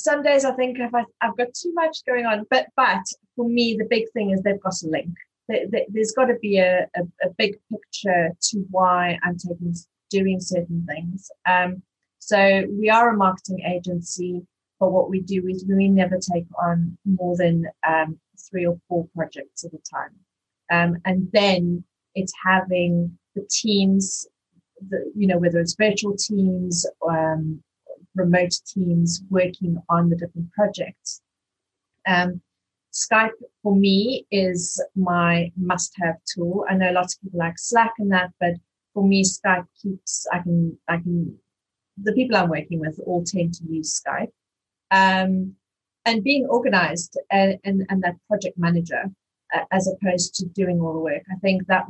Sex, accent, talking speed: female, British, 170 wpm